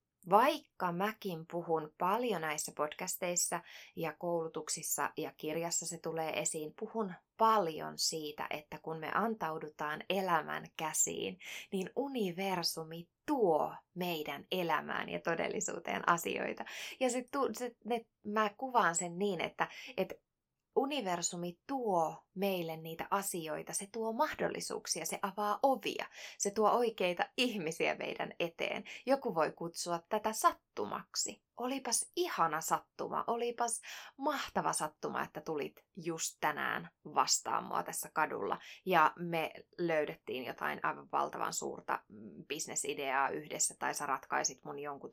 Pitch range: 160-225 Hz